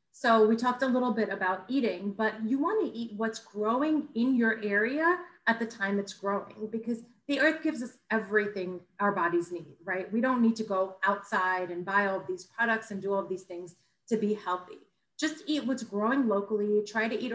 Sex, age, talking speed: female, 30-49, 215 wpm